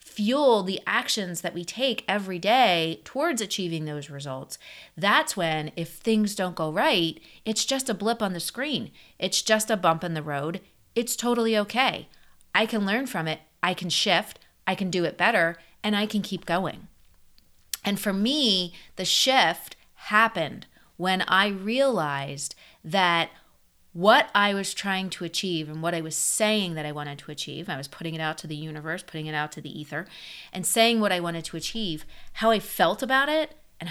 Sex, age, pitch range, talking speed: female, 30-49, 160-205 Hz, 190 wpm